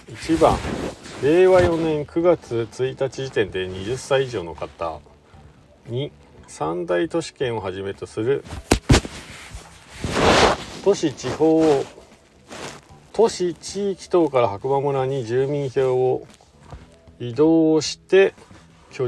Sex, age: male, 40-59